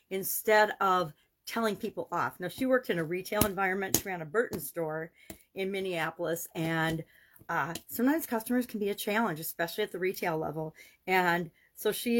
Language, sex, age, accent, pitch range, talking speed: English, female, 40-59, American, 165-215 Hz, 170 wpm